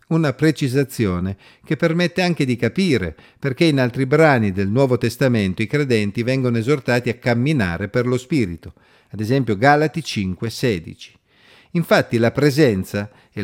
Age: 50-69